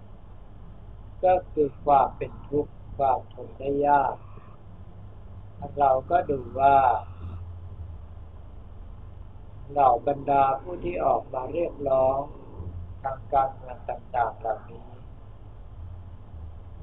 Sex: male